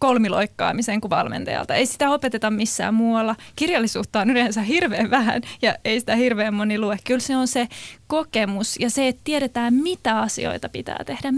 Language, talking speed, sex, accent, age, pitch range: Finnish, 170 wpm, female, native, 20-39, 215-260 Hz